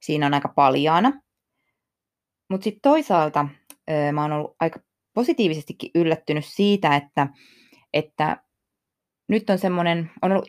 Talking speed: 110 wpm